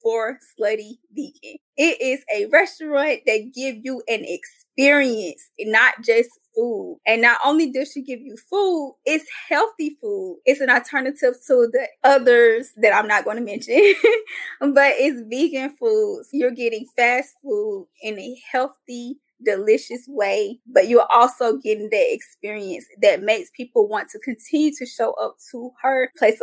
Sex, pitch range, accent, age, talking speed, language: female, 245-325 Hz, American, 20-39, 155 wpm, English